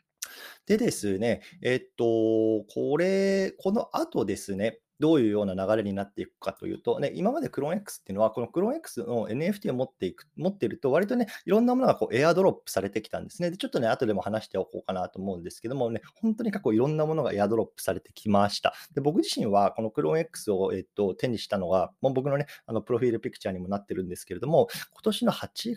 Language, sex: Japanese, male